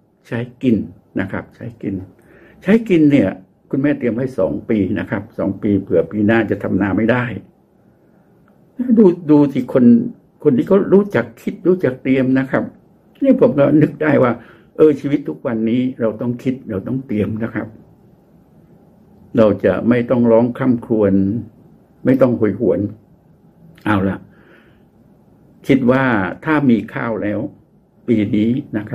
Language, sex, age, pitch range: Thai, male, 70-89, 105-150 Hz